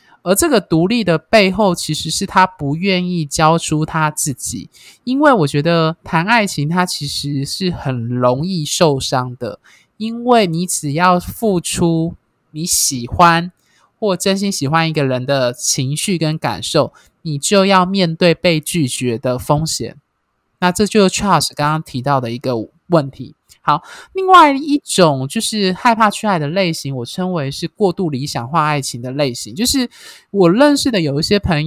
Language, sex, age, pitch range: Chinese, male, 20-39, 145-200 Hz